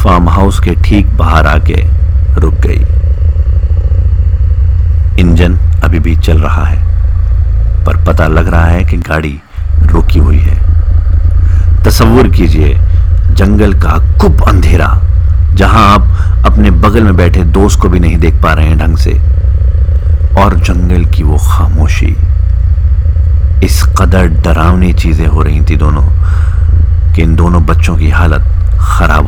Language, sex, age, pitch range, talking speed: Hindi, male, 50-69, 80-90 Hz, 135 wpm